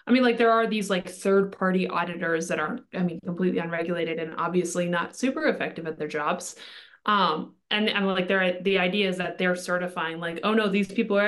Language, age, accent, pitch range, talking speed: English, 20-39, American, 180-225 Hz, 215 wpm